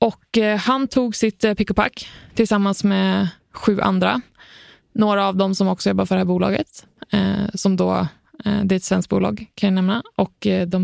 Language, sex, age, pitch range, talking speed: Swedish, female, 20-39, 190-215 Hz, 170 wpm